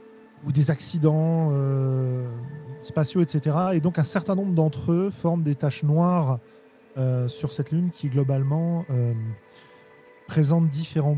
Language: French